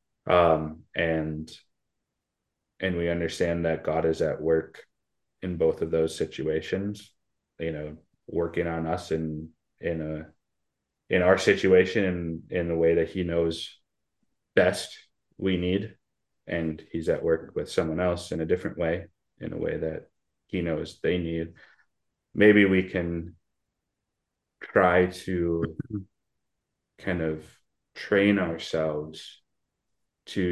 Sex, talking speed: male, 125 wpm